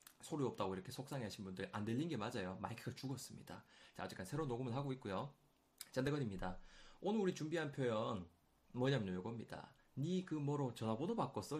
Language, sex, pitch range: Korean, male, 110-155 Hz